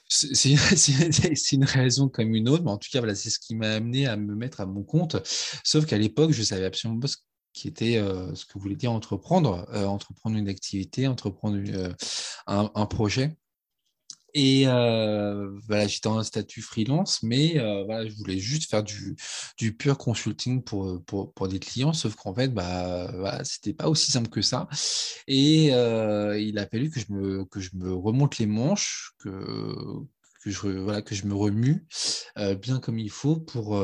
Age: 20-39